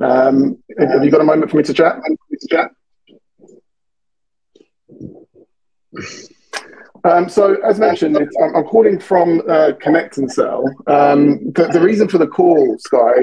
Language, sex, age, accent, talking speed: English, male, 30-49, British, 140 wpm